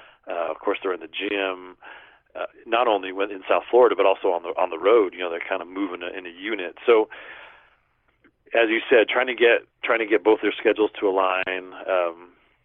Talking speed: 225 wpm